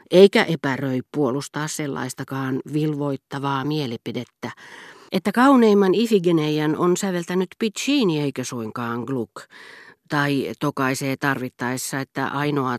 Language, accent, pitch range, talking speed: Finnish, native, 130-165 Hz, 95 wpm